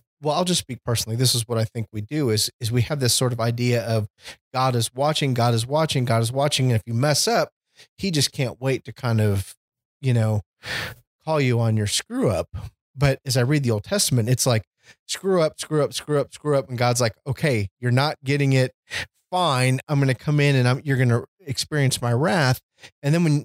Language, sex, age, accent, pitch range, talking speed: English, male, 30-49, American, 110-135 Hz, 235 wpm